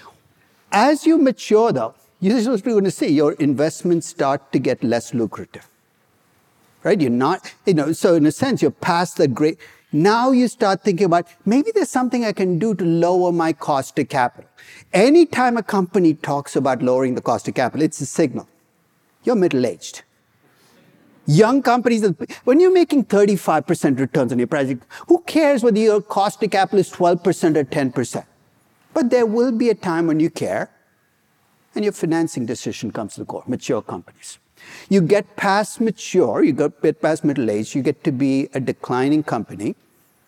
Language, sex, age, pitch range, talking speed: English, male, 50-69, 135-210 Hz, 175 wpm